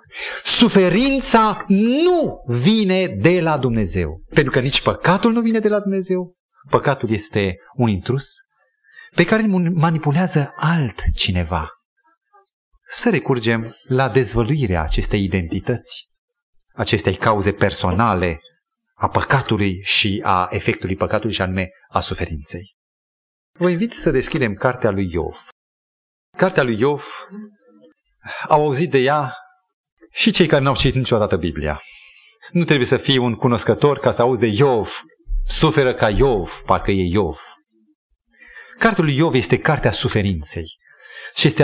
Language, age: Romanian, 30-49